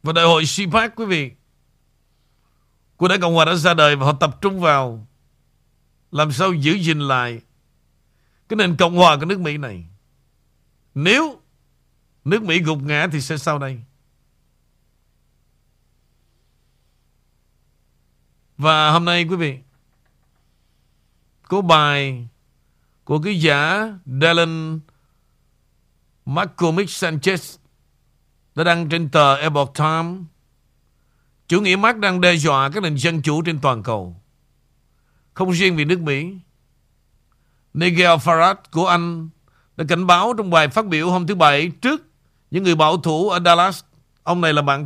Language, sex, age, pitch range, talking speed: Vietnamese, male, 50-69, 140-175 Hz, 135 wpm